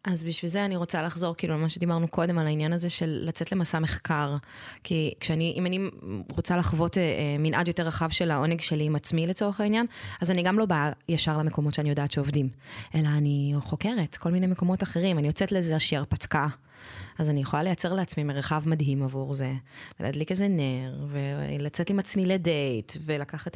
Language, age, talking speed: Hebrew, 20-39, 185 wpm